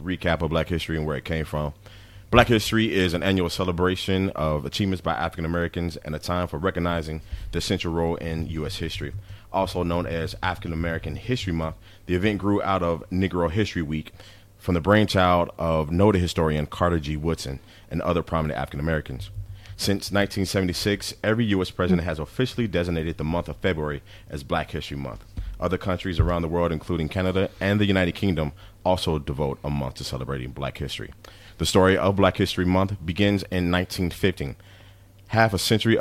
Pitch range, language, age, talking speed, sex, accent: 80-100 Hz, English, 30-49, 175 wpm, male, American